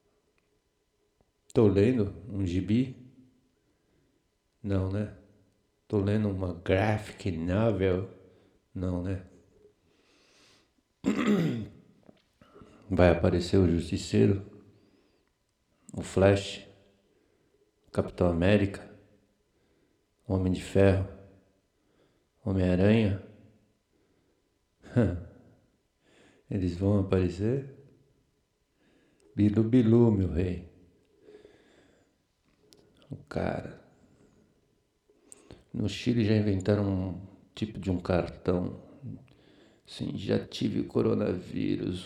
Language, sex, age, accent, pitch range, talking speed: Portuguese, male, 60-79, Brazilian, 95-110 Hz, 65 wpm